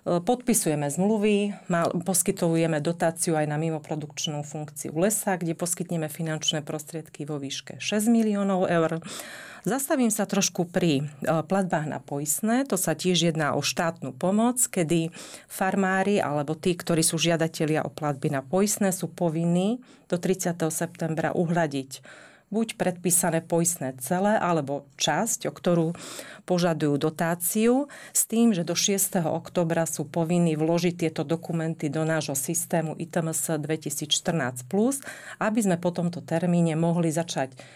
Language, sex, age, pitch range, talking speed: Slovak, female, 40-59, 155-190 Hz, 130 wpm